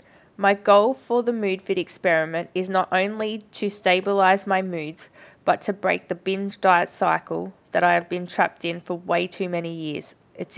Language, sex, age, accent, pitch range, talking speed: English, female, 20-39, Australian, 175-205 Hz, 185 wpm